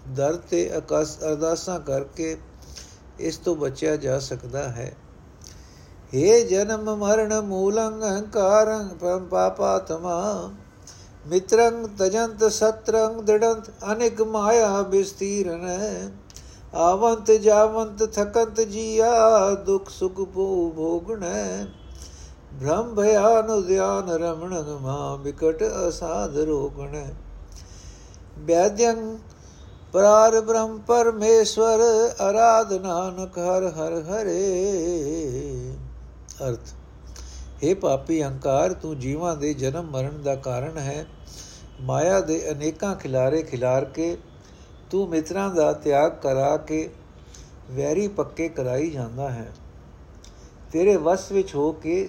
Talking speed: 95 wpm